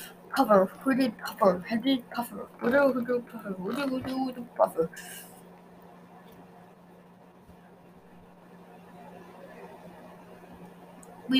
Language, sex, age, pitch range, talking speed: English, female, 20-39, 225-280 Hz, 55 wpm